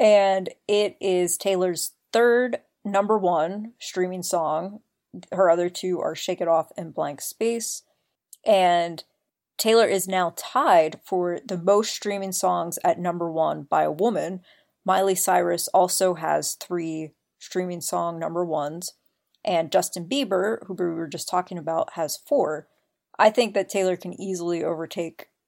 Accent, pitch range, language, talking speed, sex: American, 175-205 Hz, English, 145 wpm, female